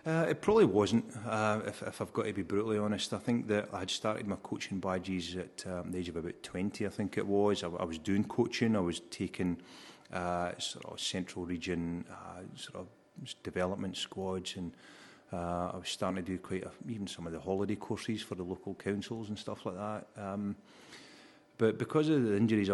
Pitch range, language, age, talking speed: 90-110 Hz, English, 30-49, 210 wpm